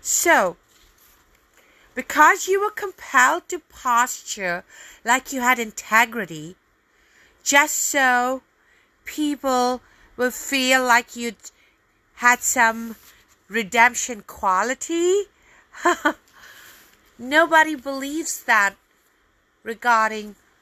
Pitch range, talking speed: 225-310 Hz, 75 wpm